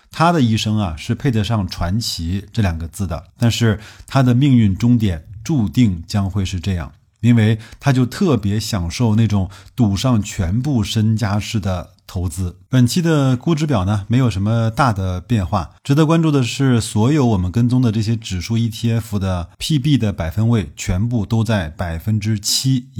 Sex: male